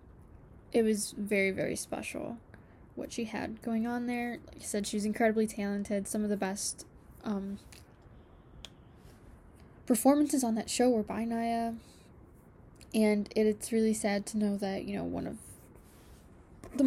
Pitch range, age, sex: 200-225 Hz, 10-29, female